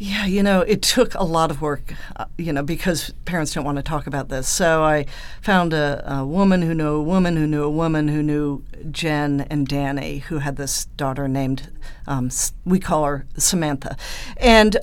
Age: 50-69